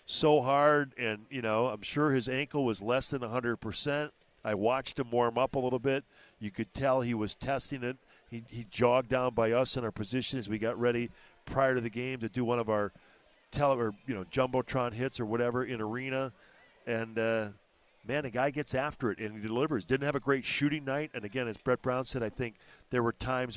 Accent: American